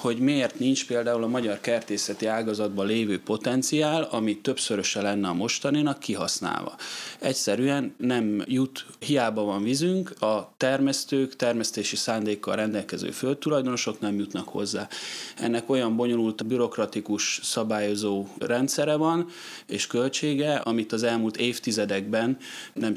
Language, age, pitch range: Hungarian, 20-39, 105-125 Hz